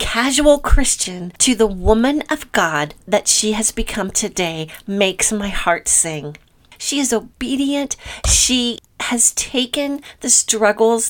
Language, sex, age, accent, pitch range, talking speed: English, female, 40-59, American, 190-250 Hz, 130 wpm